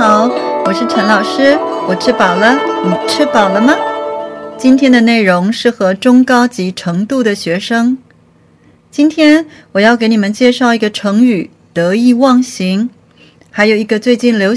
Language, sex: Chinese, female